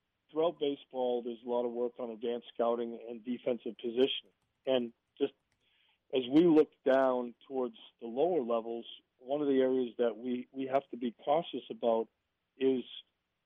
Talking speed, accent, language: 160 wpm, American, English